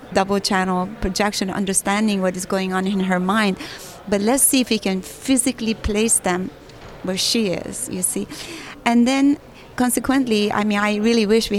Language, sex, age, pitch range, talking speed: English, female, 30-49, 195-230 Hz, 175 wpm